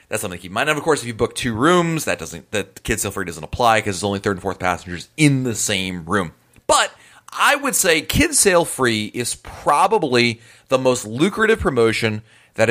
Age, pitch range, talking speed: 30-49, 95-130 Hz, 220 wpm